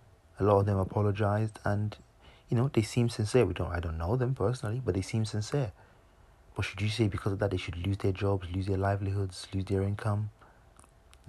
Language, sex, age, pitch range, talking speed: English, male, 30-49, 95-115 Hz, 220 wpm